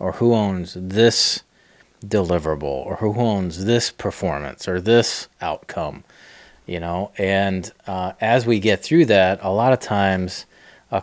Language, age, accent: English, 30-49, American